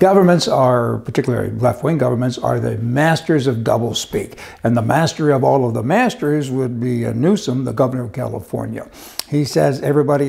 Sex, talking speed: male, 170 wpm